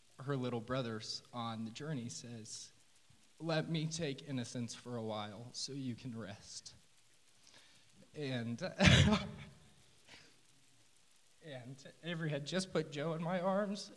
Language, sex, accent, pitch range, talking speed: English, male, American, 120-155 Hz, 120 wpm